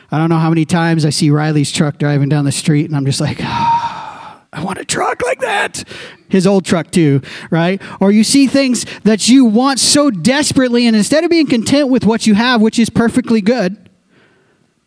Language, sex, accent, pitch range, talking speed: English, male, American, 170-240 Hz, 210 wpm